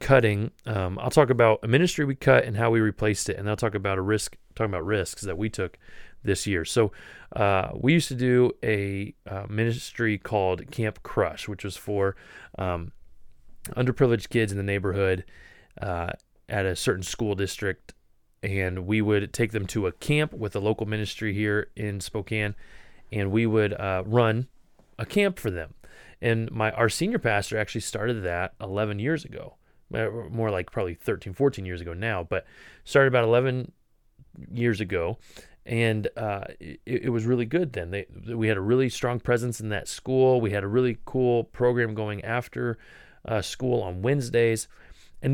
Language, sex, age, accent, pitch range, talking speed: English, male, 30-49, American, 100-125 Hz, 175 wpm